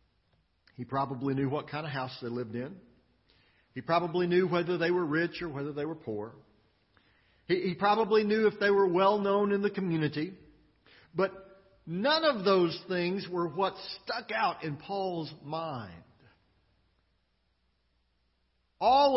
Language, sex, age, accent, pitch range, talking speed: English, male, 50-69, American, 130-195 Hz, 145 wpm